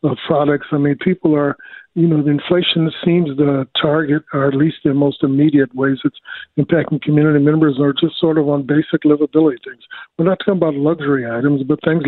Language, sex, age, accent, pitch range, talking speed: English, male, 60-79, American, 145-165 Hz, 200 wpm